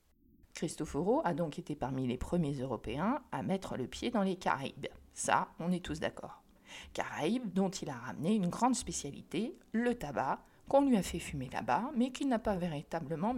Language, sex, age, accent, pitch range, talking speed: French, female, 50-69, French, 170-240 Hz, 185 wpm